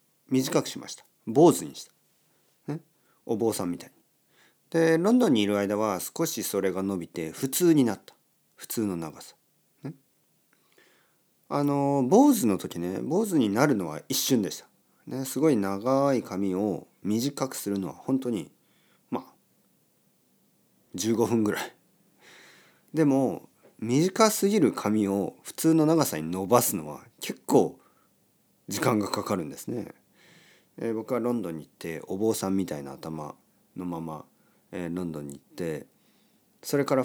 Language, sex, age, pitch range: Japanese, male, 40-59, 95-135 Hz